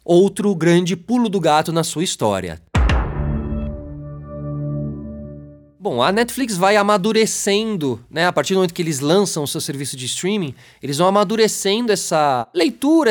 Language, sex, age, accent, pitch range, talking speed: Portuguese, male, 20-39, Brazilian, 145-195 Hz, 140 wpm